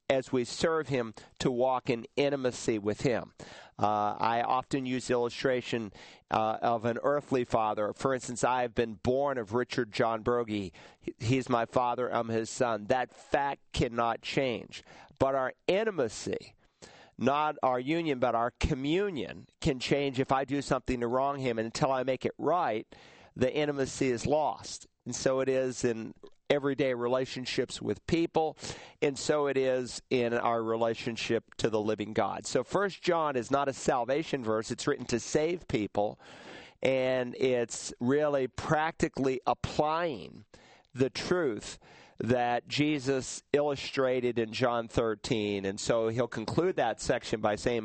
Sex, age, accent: male, 50-69, American